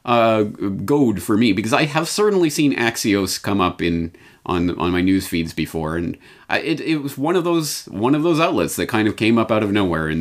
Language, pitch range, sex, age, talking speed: English, 90-145 Hz, male, 30-49, 235 wpm